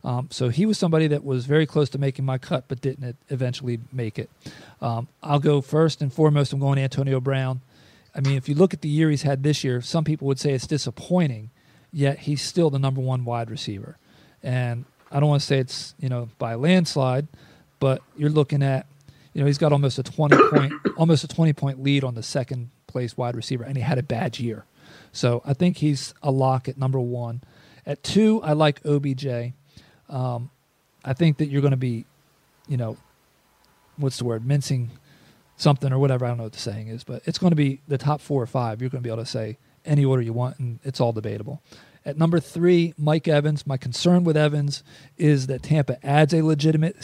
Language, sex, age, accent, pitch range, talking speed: English, male, 40-59, American, 130-150 Hz, 220 wpm